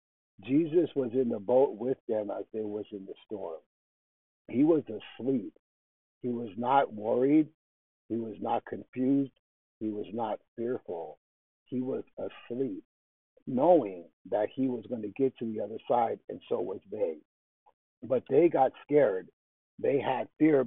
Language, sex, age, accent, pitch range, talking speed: English, male, 60-79, American, 100-140 Hz, 155 wpm